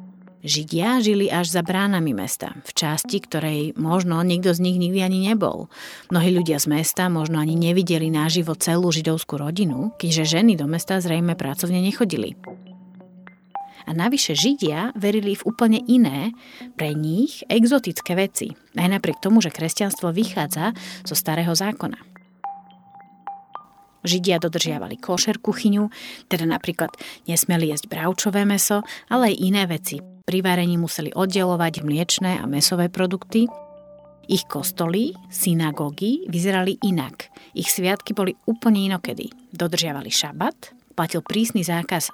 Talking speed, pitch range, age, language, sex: 130 wpm, 170-210 Hz, 30-49, Slovak, female